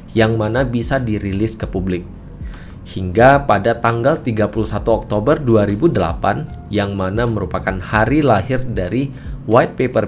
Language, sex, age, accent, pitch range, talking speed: Indonesian, male, 20-39, native, 95-120 Hz, 120 wpm